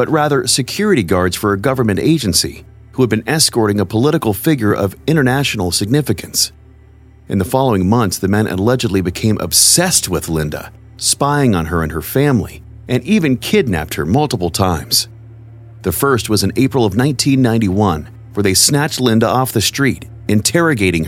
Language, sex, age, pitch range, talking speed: English, male, 40-59, 100-130 Hz, 160 wpm